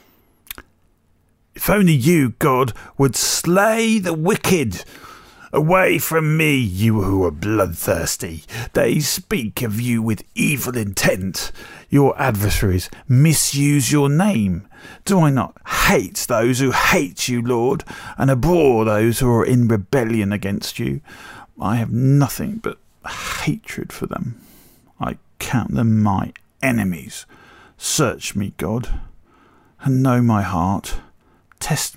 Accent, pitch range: British, 95-140 Hz